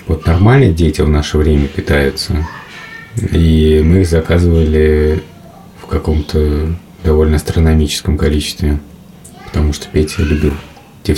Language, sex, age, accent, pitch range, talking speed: Russian, male, 30-49, native, 80-100 Hz, 115 wpm